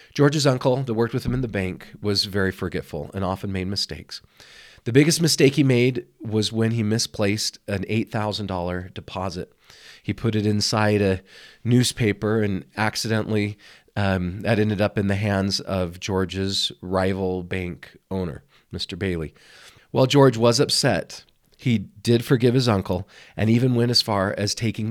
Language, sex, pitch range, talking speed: English, male, 95-120 Hz, 160 wpm